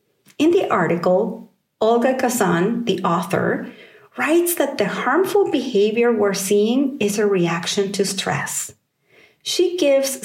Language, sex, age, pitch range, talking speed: English, female, 40-59, 205-255 Hz, 125 wpm